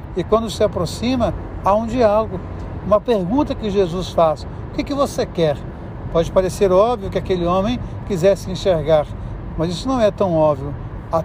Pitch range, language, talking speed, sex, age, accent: 160-225 Hz, Portuguese, 170 wpm, male, 60-79, Brazilian